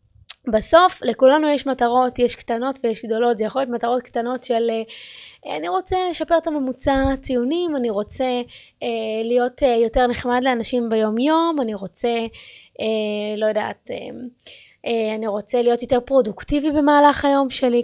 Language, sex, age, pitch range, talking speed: Hebrew, female, 20-39, 225-275 Hz, 150 wpm